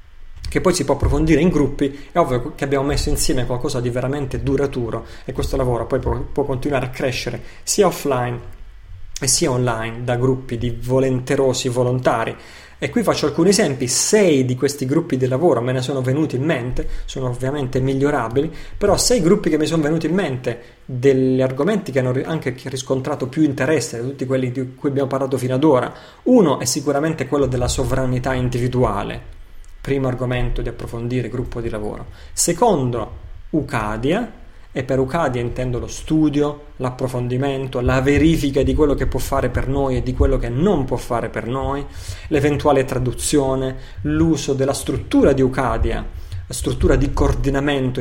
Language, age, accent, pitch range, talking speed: Italian, 30-49, native, 125-145 Hz, 170 wpm